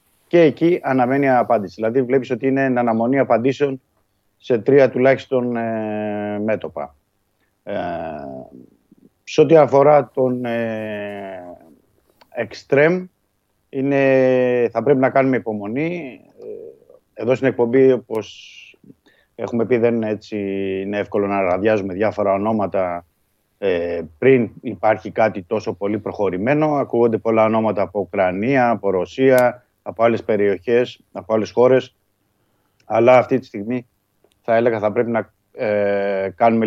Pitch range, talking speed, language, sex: 100-125 Hz, 110 wpm, Greek, male